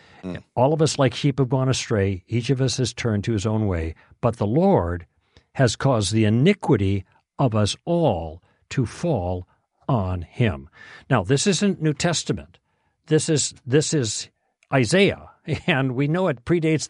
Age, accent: 60-79, American